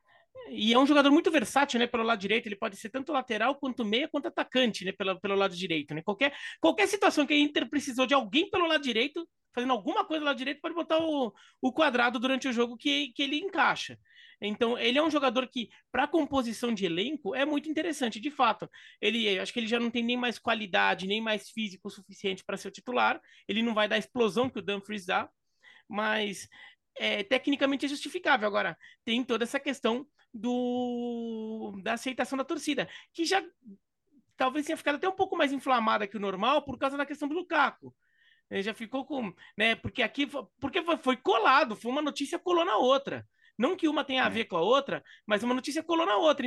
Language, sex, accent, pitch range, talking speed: Portuguese, male, Brazilian, 225-295 Hz, 210 wpm